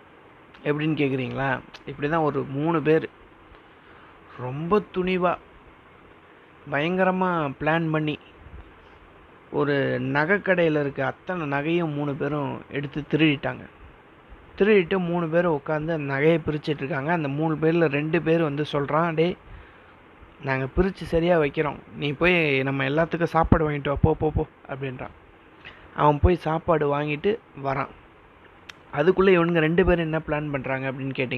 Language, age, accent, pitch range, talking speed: Tamil, 30-49, native, 140-170 Hz, 120 wpm